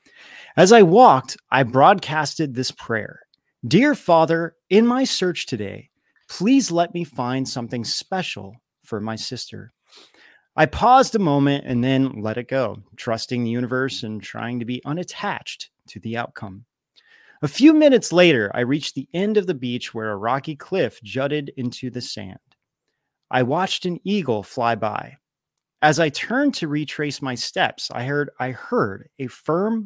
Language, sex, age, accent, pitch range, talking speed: English, male, 30-49, American, 120-175 Hz, 160 wpm